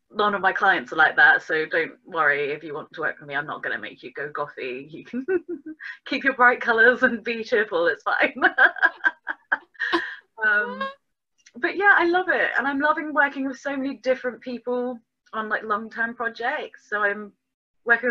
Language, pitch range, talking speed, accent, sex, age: English, 170-265 Hz, 190 wpm, British, female, 20-39